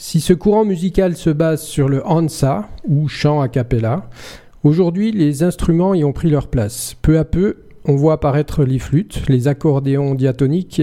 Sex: male